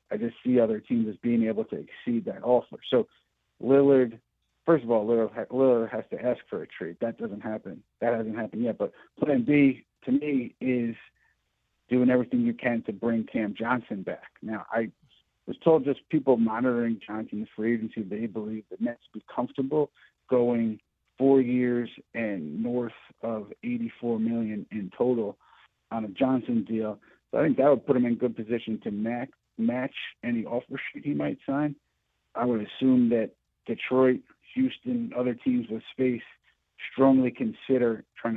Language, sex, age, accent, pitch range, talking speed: English, male, 50-69, American, 115-130 Hz, 170 wpm